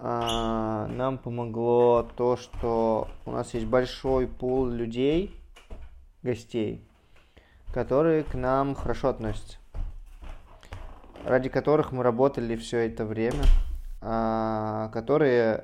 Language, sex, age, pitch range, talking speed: Russian, male, 20-39, 110-135 Hz, 100 wpm